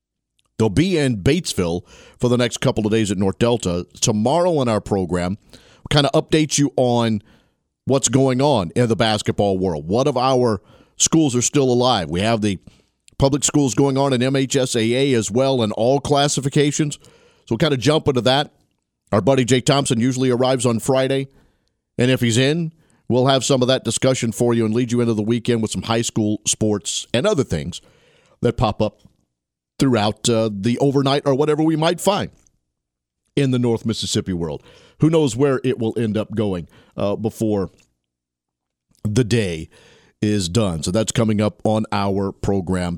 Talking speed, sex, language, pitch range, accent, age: 180 wpm, male, English, 105-140 Hz, American, 50-69